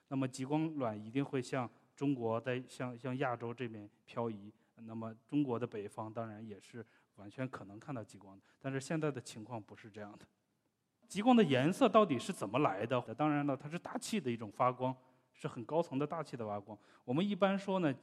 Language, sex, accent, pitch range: Chinese, male, native, 115-150 Hz